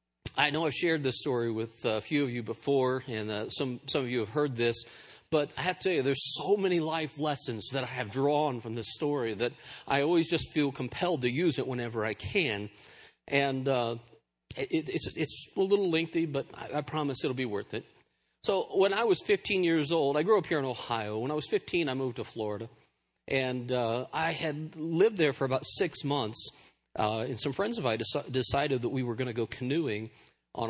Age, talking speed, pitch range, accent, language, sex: 40-59, 220 wpm, 120-160 Hz, American, English, male